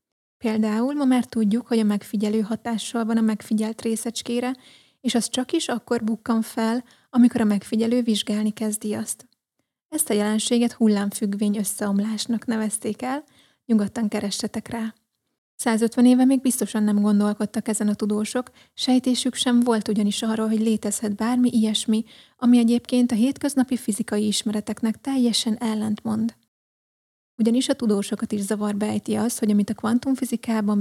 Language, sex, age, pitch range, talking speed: Hungarian, female, 30-49, 215-240 Hz, 140 wpm